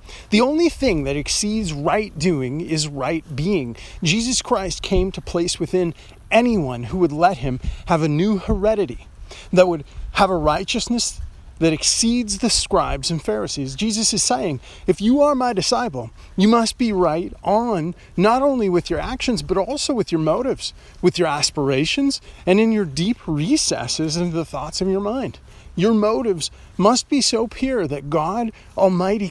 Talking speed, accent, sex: 170 wpm, American, male